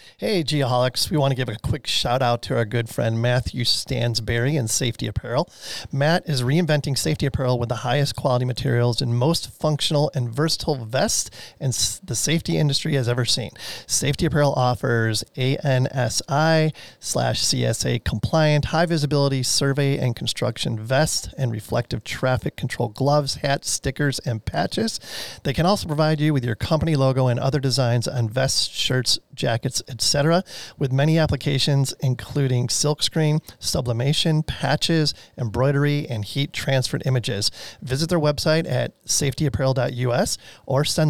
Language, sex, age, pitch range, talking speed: English, male, 30-49, 120-150 Hz, 145 wpm